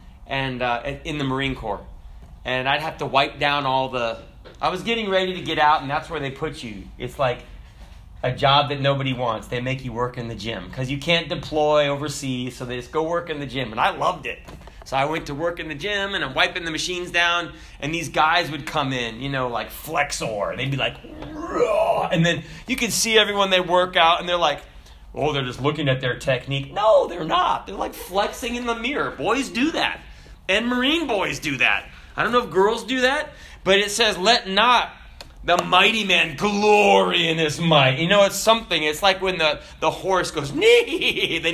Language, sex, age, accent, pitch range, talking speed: English, male, 30-49, American, 125-180 Hz, 220 wpm